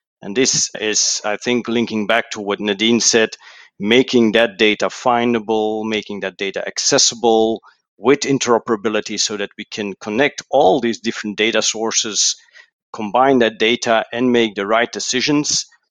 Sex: male